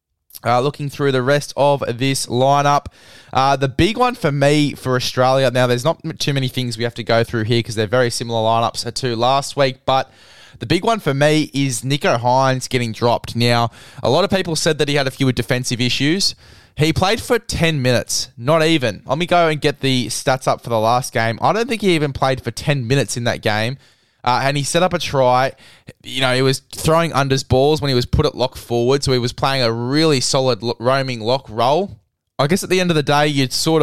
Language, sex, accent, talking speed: English, male, Australian, 235 wpm